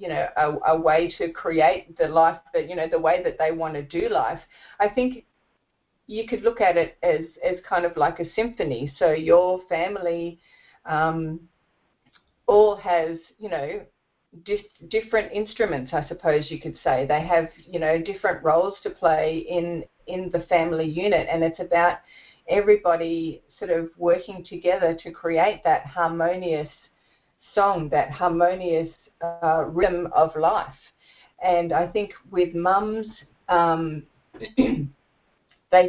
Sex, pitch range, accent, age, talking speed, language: female, 160-190 Hz, Australian, 40-59, 150 wpm, English